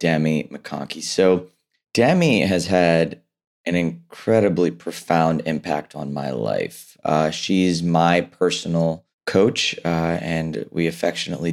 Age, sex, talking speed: 20-39, male, 115 wpm